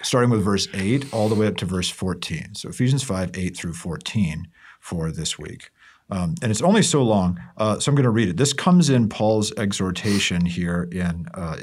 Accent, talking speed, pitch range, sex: American, 210 wpm, 90-115 Hz, male